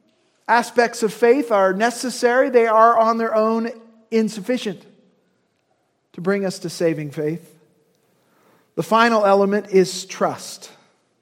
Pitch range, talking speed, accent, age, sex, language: 180-230 Hz, 120 wpm, American, 40-59, male, English